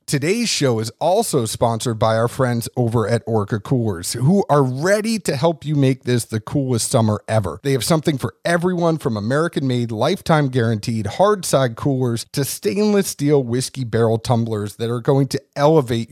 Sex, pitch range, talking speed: male, 115-160 Hz, 170 wpm